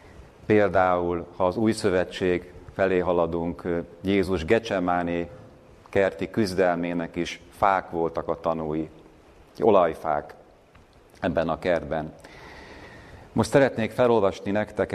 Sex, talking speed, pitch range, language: male, 95 wpm, 85-105 Hz, Hungarian